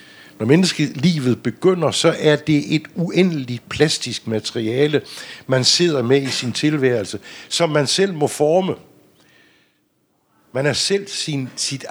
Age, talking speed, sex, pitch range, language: 60-79, 130 wpm, male, 115-155 Hz, Danish